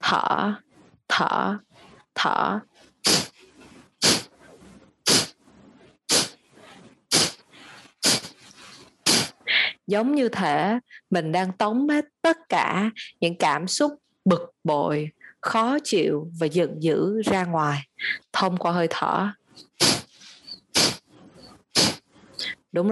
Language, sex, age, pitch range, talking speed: Vietnamese, female, 20-39, 170-230 Hz, 75 wpm